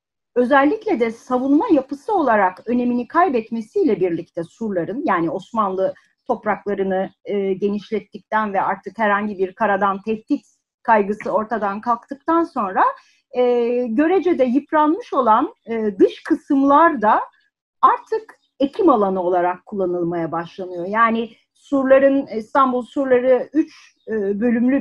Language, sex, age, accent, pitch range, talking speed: Turkish, female, 40-59, native, 205-295 Hz, 100 wpm